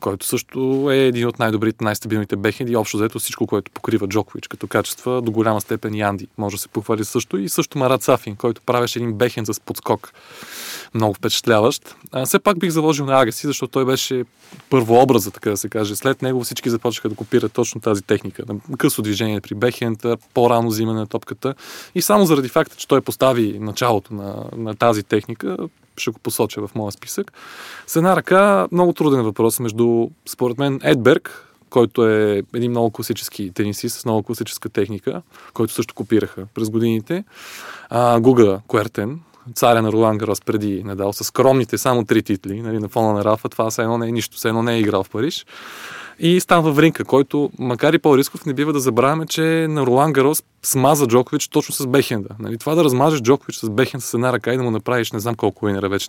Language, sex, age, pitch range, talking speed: Bulgarian, male, 20-39, 110-140 Hz, 195 wpm